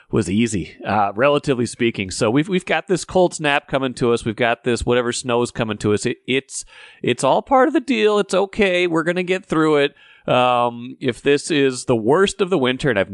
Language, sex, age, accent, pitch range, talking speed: English, male, 30-49, American, 110-145 Hz, 230 wpm